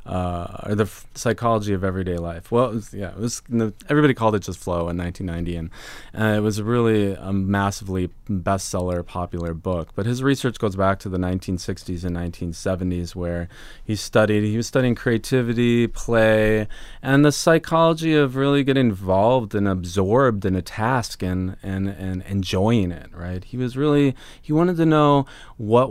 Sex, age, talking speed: male, 30-49, 180 wpm